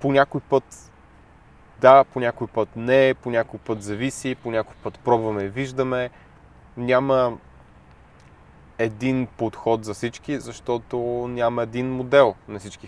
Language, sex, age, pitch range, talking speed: Bulgarian, male, 20-39, 105-120 Hz, 135 wpm